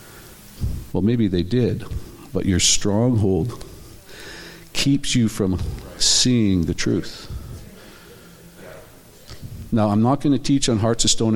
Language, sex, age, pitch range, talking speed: English, male, 50-69, 95-125 Hz, 120 wpm